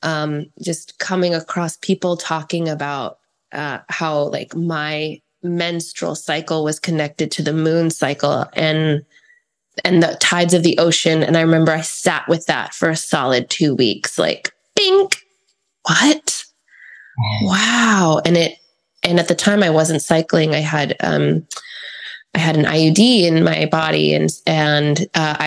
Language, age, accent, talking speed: English, 20-39, American, 150 wpm